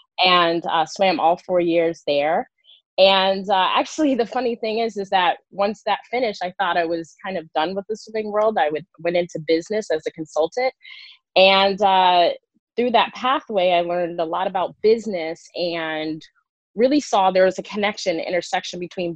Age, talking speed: 20-39, 180 wpm